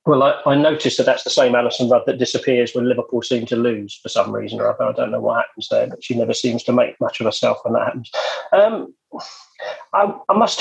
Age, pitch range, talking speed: 40-59, 120-160 Hz, 250 wpm